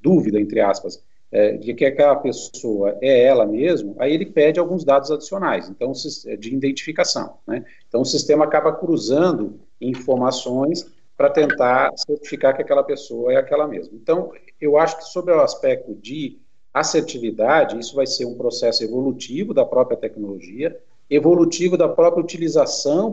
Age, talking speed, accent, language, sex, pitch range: 50-69, 150 wpm, Brazilian, Portuguese, male, 125-175 Hz